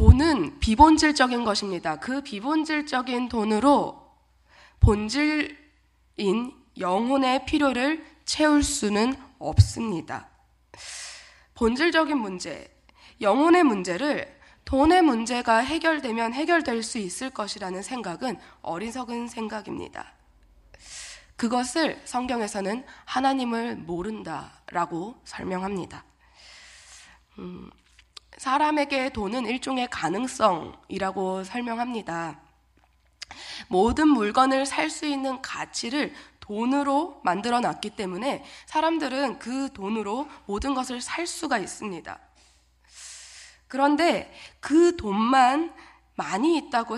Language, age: Korean, 20-39